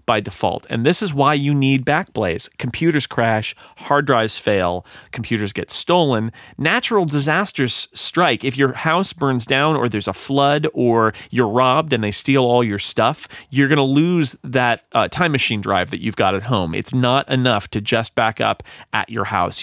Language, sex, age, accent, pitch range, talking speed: English, male, 40-59, American, 115-145 Hz, 190 wpm